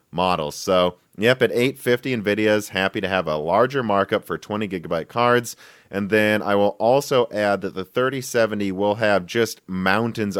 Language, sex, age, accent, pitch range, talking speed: English, male, 30-49, American, 85-115 Hz, 175 wpm